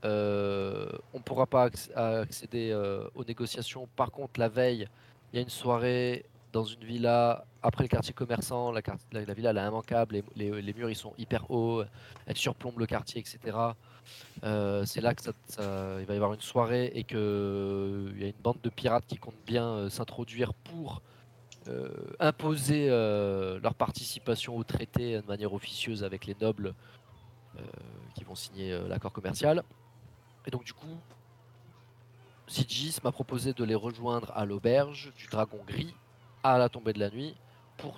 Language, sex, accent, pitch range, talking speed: French, male, French, 110-125 Hz, 175 wpm